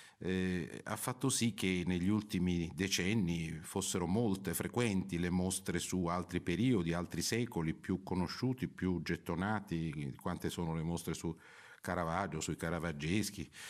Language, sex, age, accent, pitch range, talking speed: Italian, male, 50-69, native, 85-105 Hz, 130 wpm